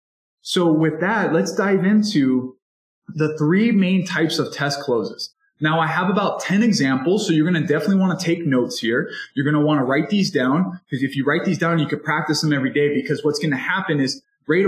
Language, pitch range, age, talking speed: English, 140-185 Hz, 20-39, 230 wpm